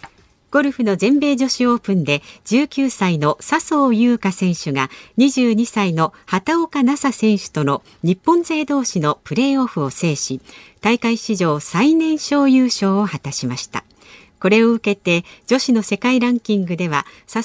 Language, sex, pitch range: Japanese, female, 170-265 Hz